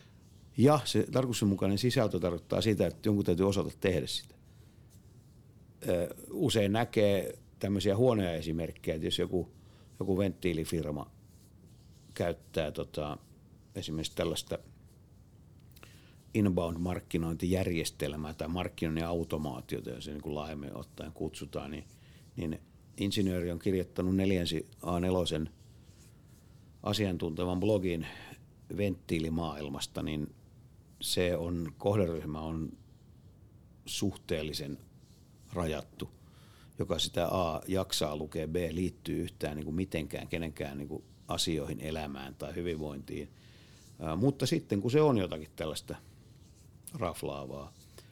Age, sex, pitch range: 50-69, male, 80-105 Hz